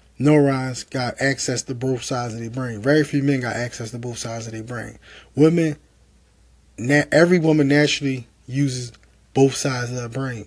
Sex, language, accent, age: male, English, American, 20-39